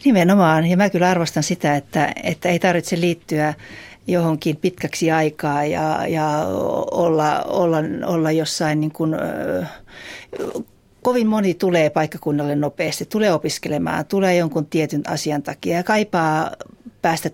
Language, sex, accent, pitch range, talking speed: Finnish, female, native, 150-175 Hz, 130 wpm